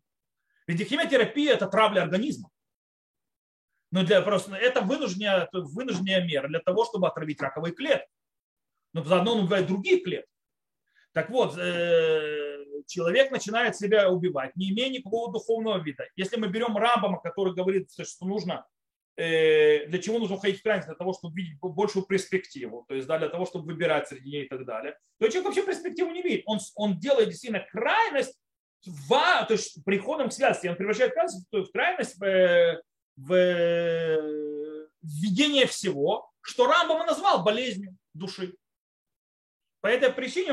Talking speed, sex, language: 145 wpm, male, Russian